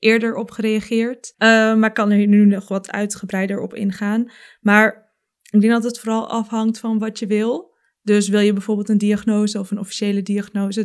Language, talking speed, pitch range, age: Dutch, 190 wpm, 195-220 Hz, 20-39